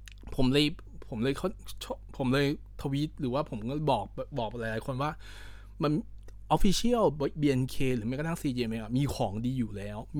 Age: 20-39